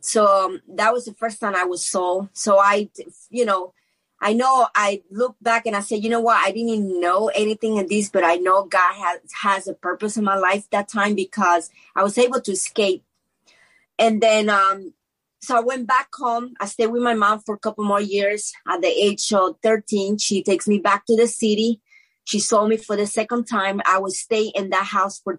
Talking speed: 225 wpm